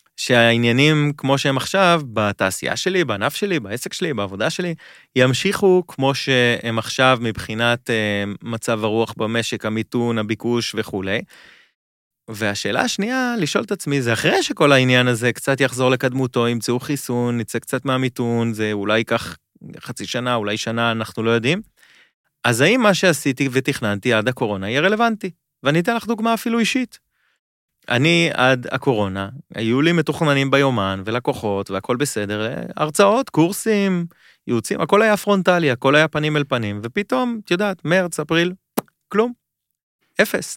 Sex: male